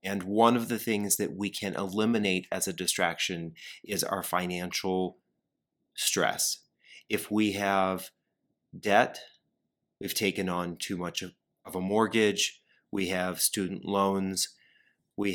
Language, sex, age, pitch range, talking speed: English, male, 30-49, 95-110 Hz, 135 wpm